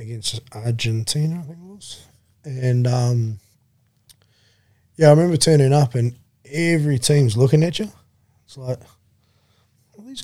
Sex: male